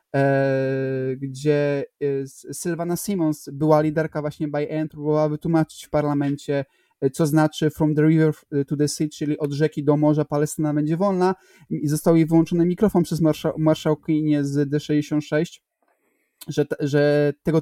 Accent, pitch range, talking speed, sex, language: native, 150-175 Hz, 140 wpm, male, Polish